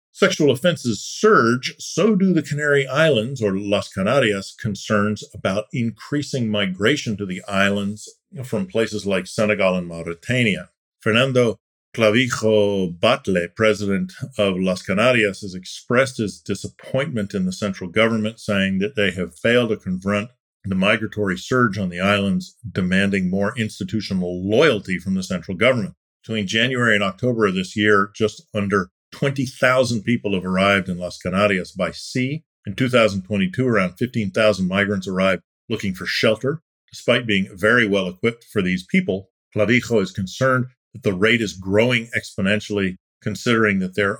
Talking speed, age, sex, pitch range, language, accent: 145 wpm, 50-69, male, 95-120 Hz, English, American